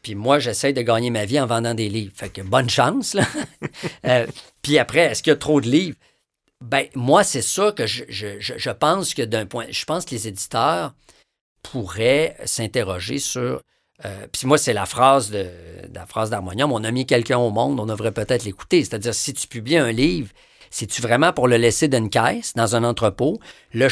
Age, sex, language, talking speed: 50-69, male, French, 210 wpm